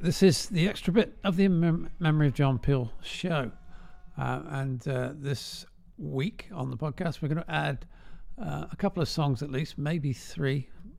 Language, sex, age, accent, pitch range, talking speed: English, male, 50-69, British, 120-150 Hz, 180 wpm